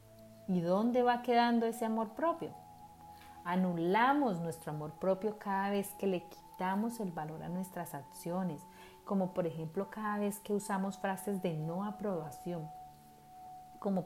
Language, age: Spanish, 30-49